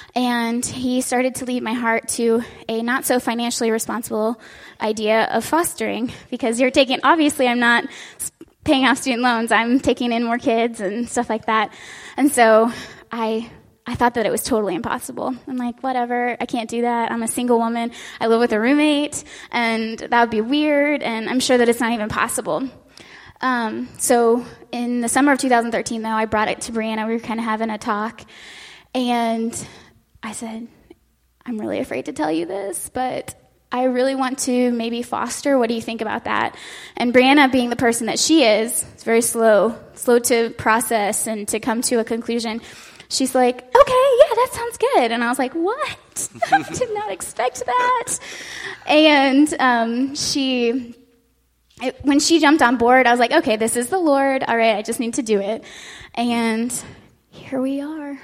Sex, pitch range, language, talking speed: female, 230-260 Hz, English, 185 wpm